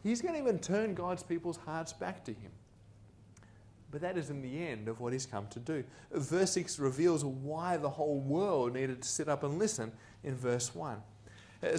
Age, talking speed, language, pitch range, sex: 30-49, 200 wpm, English, 115-170 Hz, male